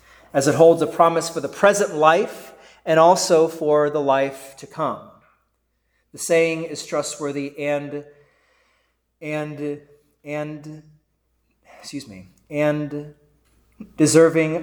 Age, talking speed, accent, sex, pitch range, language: 30-49, 110 wpm, American, male, 140-160 Hz, English